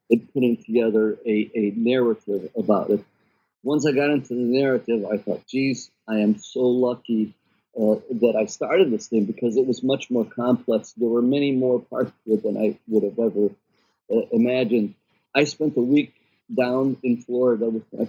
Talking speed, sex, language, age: 185 wpm, male, English, 50-69